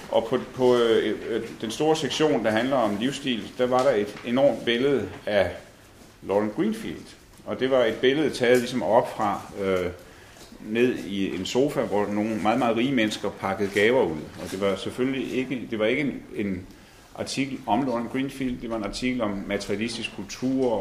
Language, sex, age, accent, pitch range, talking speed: Danish, male, 40-59, native, 100-125 Hz, 185 wpm